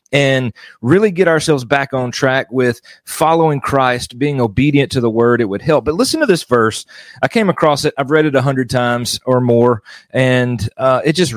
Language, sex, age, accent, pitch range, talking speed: English, male, 40-59, American, 120-150 Hz, 205 wpm